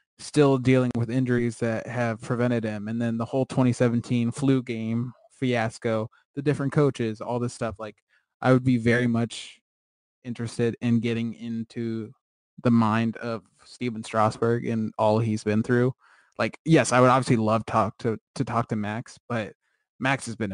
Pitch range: 110-125 Hz